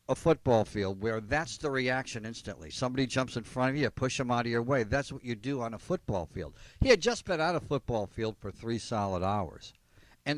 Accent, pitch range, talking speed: American, 115-150 Hz, 235 wpm